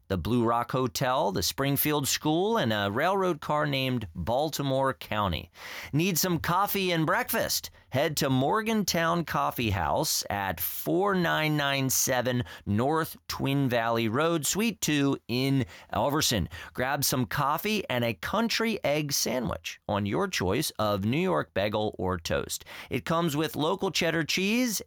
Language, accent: English, American